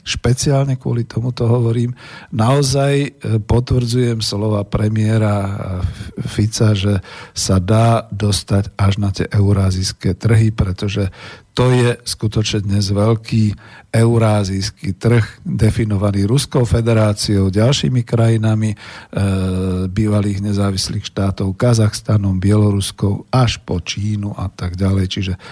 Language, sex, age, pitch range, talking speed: Slovak, male, 50-69, 100-120 Hz, 100 wpm